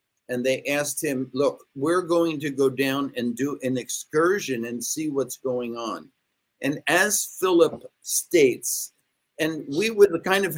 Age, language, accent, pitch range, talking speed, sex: 50-69, English, American, 130-155 Hz, 160 wpm, male